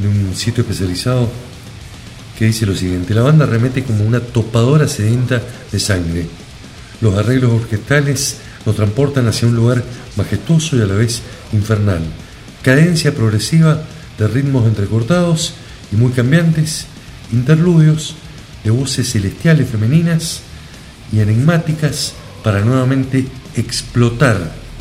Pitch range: 105-135 Hz